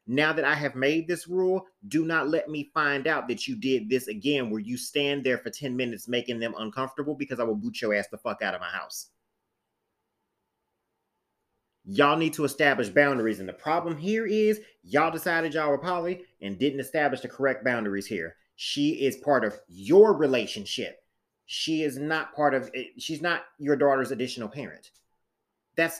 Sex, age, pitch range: male, 30-49, 105-155 Hz